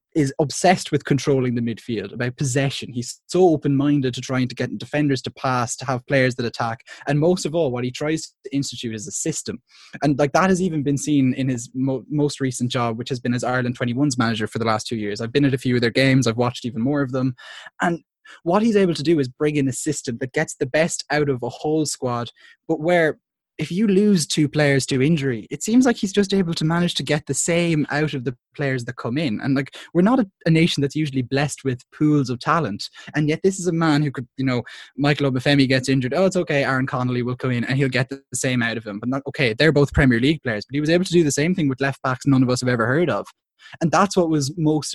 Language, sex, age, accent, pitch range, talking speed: English, male, 20-39, Irish, 125-155 Hz, 265 wpm